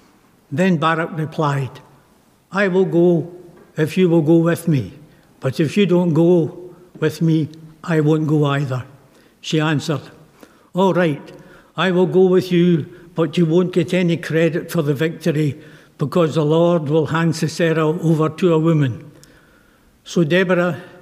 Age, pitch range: 60-79, 155-175 Hz